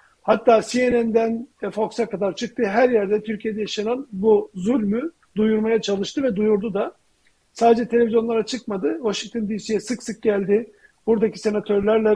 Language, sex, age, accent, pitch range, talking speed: Turkish, male, 50-69, native, 200-240 Hz, 130 wpm